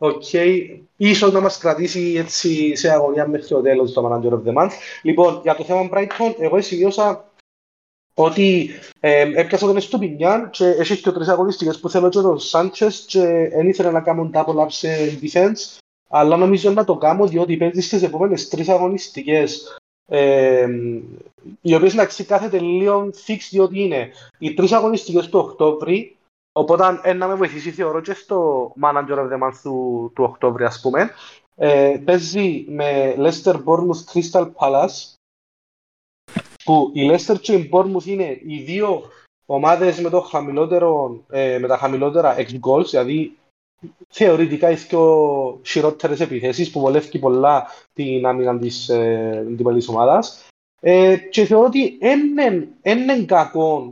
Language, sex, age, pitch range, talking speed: Greek, male, 30-49, 145-190 Hz, 145 wpm